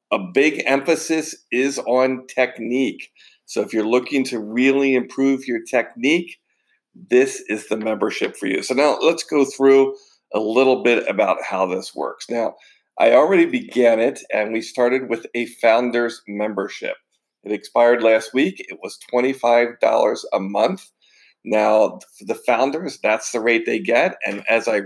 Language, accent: English, American